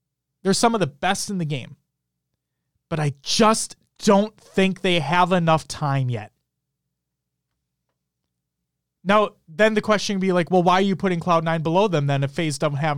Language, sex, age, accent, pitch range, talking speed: English, male, 30-49, American, 125-195 Hz, 175 wpm